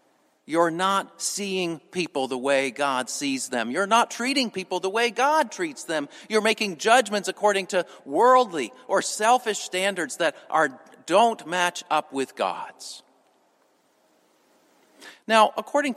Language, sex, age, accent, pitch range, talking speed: English, male, 50-69, American, 145-230 Hz, 135 wpm